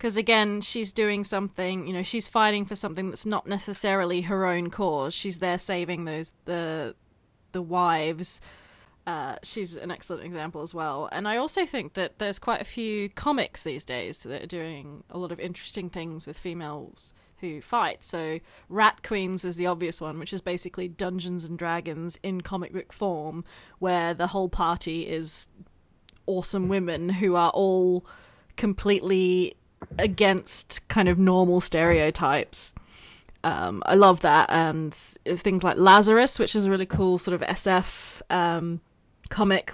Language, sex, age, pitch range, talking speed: English, female, 20-39, 165-195 Hz, 160 wpm